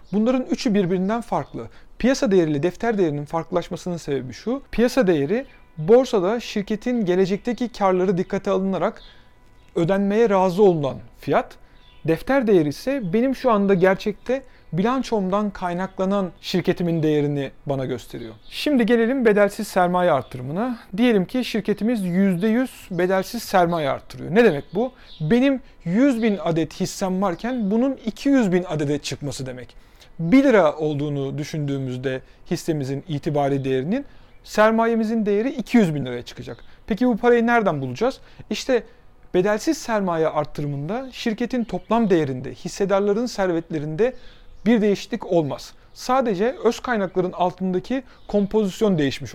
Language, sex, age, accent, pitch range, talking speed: Turkish, male, 40-59, native, 150-230 Hz, 120 wpm